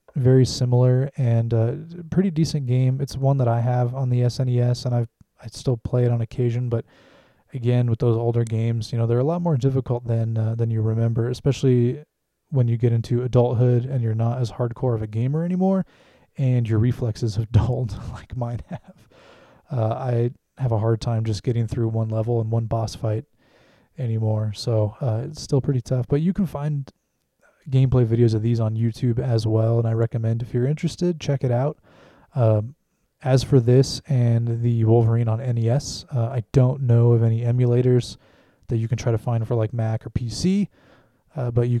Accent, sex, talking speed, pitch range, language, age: American, male, 200 wpm, 115-130 Hz, English, 20-39